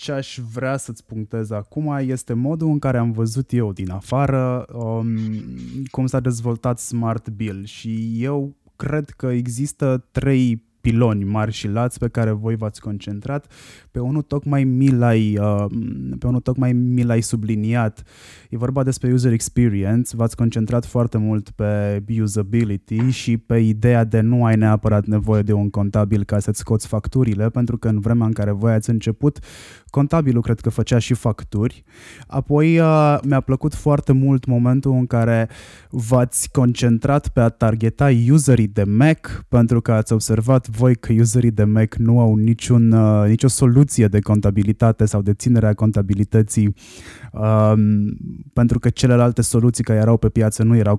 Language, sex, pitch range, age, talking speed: Romanian, male, 110-130 Hz, 20-39, 155 wpm